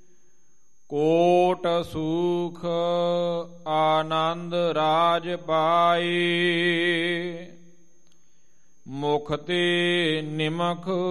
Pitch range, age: 170-180 Hz, 40-59